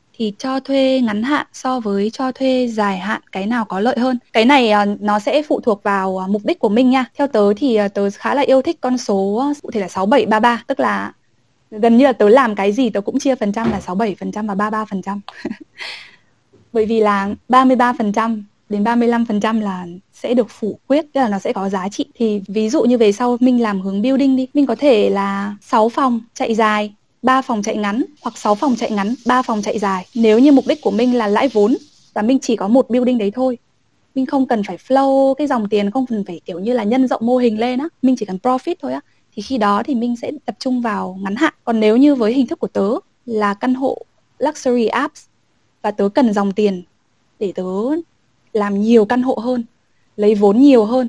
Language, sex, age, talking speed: Vietnamese, female, 10-29, 225 wpm